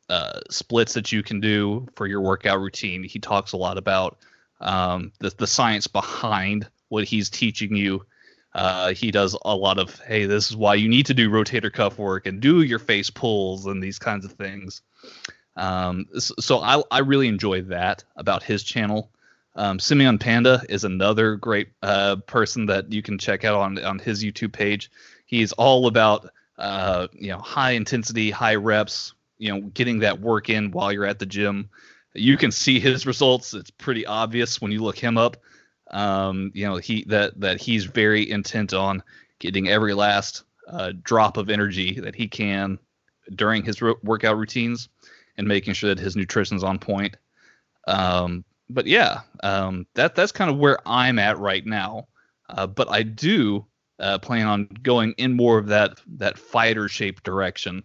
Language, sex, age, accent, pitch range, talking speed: English, male, 20-39, American, 100-115 Hz, 180 wpm